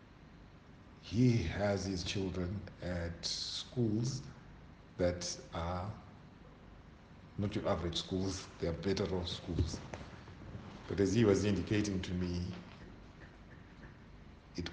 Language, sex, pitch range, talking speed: English, male, 85-105 Hz, 100 wpm